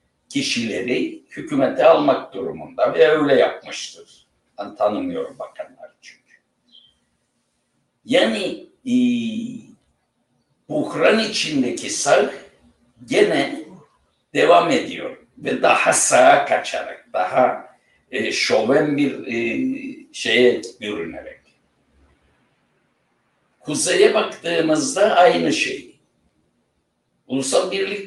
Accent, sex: native, male